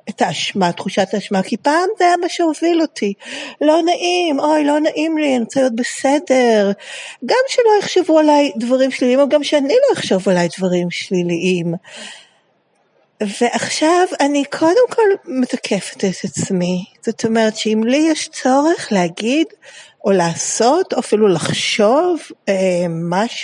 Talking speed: 95 wpm